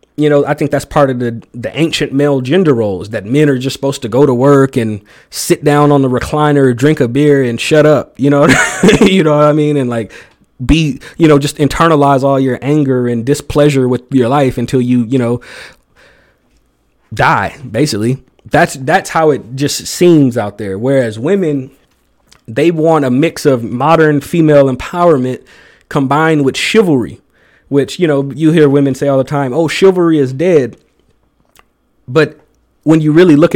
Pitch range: 130-155 Hz